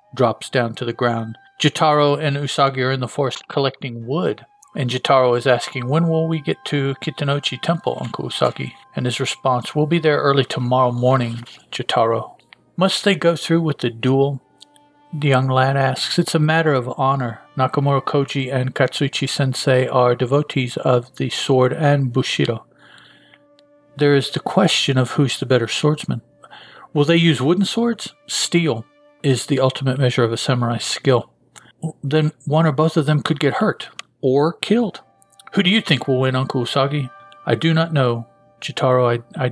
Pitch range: 125-155 Hz